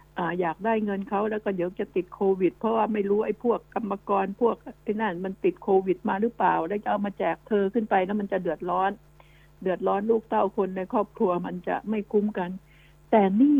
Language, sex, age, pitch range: Thai, female, 60-79, 175-230 Hz